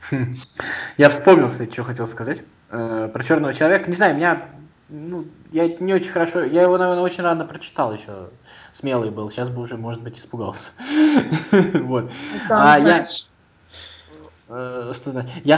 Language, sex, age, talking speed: Russian, male, 20-39, 130 wpm